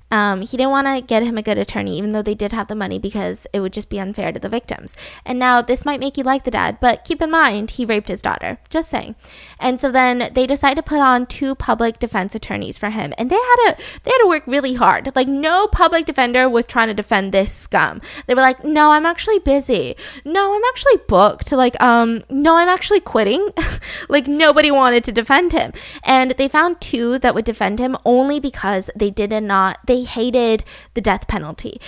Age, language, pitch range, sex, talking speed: 10-29, English, 230-300 Hz, female, 220 wpm